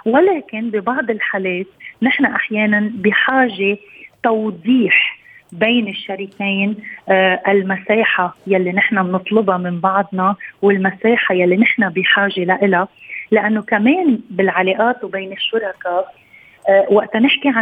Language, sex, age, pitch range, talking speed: Arabic, female, 30-49, 195-230 Hz, 90 wpm